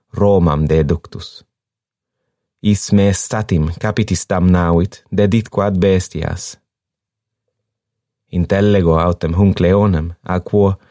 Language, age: English, 30-49